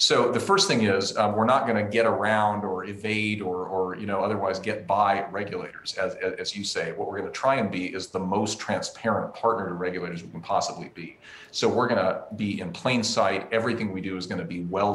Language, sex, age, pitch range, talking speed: English, male, 40-59, 95-115 Hz, 240 wpm